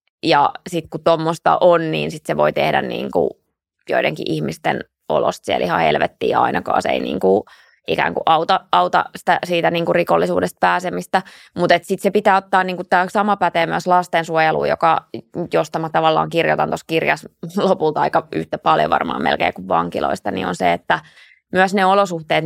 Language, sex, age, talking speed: Finnish, female, 20-39, 165 wpm